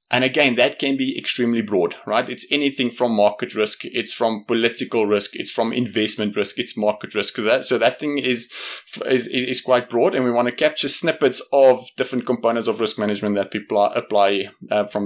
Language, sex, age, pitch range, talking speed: English, male, 20-39, 105-125 Hz, 185 wpm